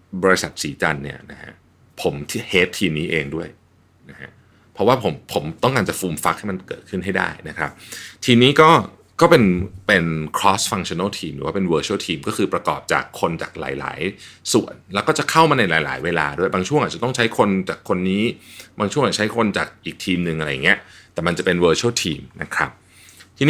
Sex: male